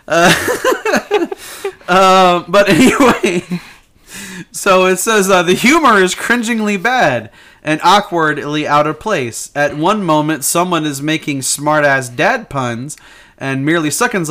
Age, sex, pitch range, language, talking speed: 30-49, male, 130-160 Hz, English, 130 wpm